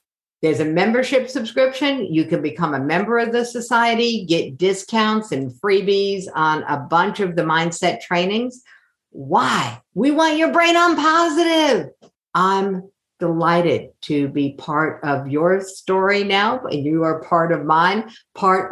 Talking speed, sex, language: 145 wpm, female, English